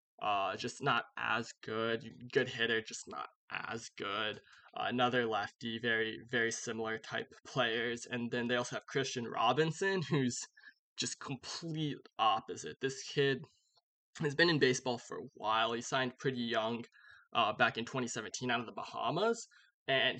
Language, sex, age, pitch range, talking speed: English, male, 20-39, 120-145 Hz, 160 wpm